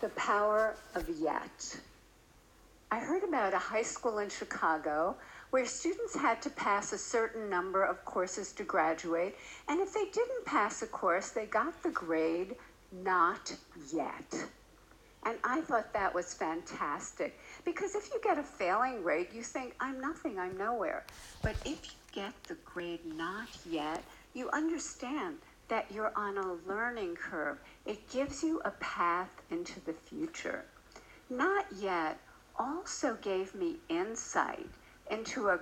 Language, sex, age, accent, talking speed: English, female, 60-79, American, 150 wpm